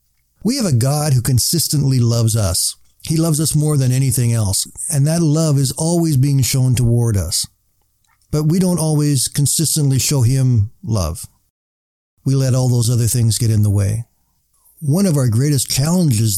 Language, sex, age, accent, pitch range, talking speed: English, male, 50-69, American, 115-145 Hz, 170 wpm